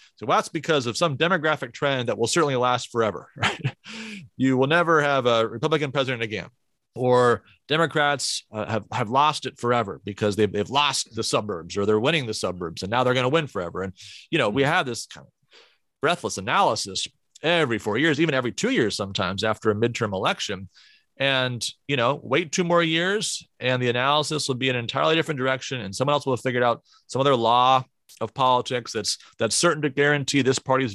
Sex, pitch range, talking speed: male, 110-140 Hz, 205 wpm